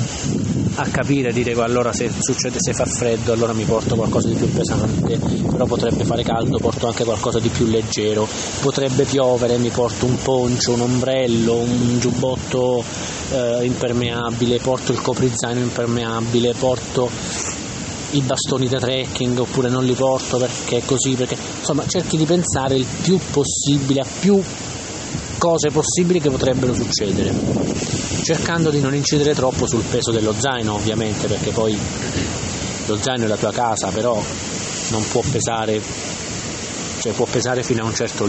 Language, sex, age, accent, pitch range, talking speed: English, male, 20-39, Italian, 115-135 Hz, 155 wpm